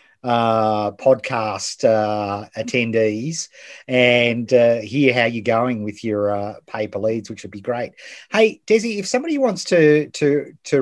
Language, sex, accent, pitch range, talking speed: English, male, Australian, 115-150 Hz, 150 wpm